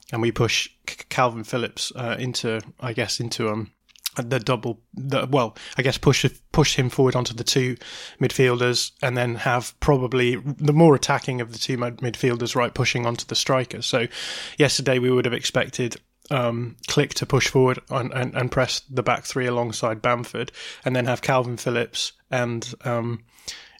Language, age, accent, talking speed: English, 20-39, British, 175 wpm